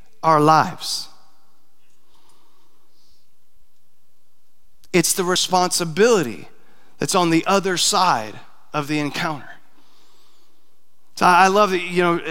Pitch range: 170-210 Hz